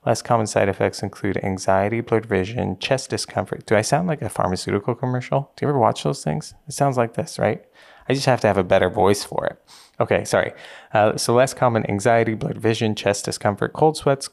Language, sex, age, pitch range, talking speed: English, male, 20-39, 95-120 Hz, 215 wpm